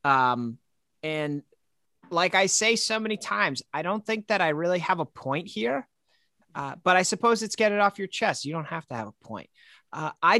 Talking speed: 215 wpm